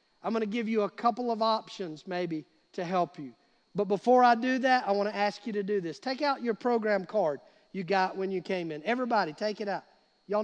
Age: 50-69